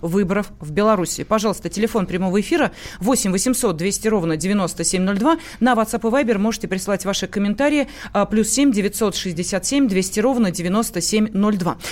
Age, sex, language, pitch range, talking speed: 30-49, female, Russian, 170-225 Hz, 130 wpm